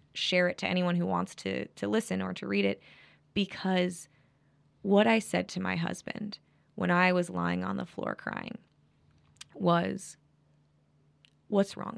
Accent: American